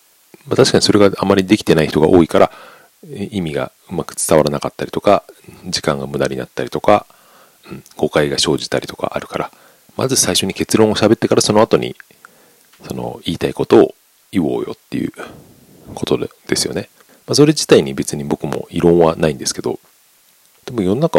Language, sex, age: Japanese, male, 40-59